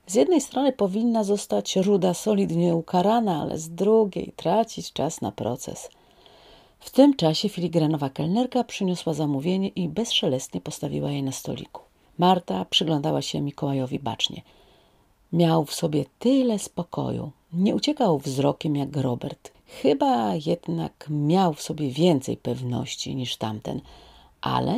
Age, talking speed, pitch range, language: 40-59, 130 wpm, 145-205 Hz, Polish